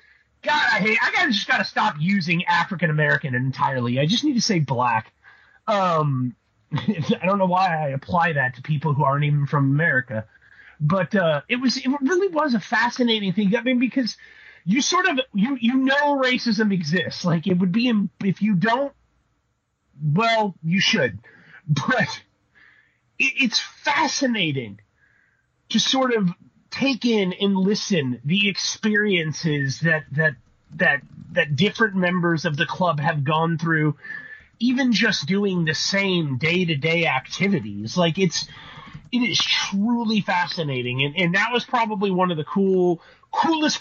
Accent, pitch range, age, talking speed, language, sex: American, 155-225 Hz, 30-49, 155 wpm, English, male